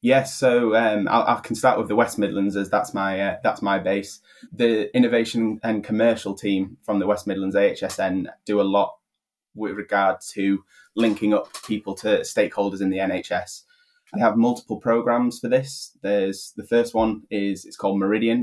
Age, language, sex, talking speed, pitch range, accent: 20-39, English, male, 180 wpm, 100-115 Hz, British